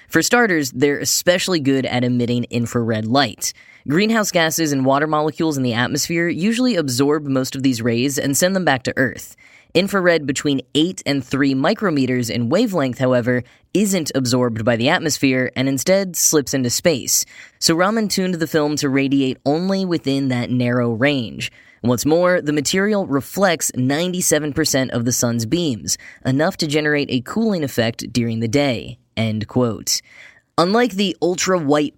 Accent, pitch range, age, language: American, 125-160 Hz, 10-29, English